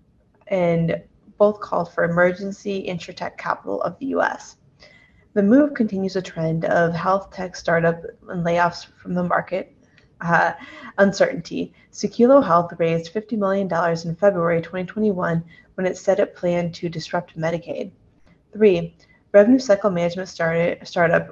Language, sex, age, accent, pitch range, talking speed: English, female, 20-39, American, 170-205 Hz, 130 wpm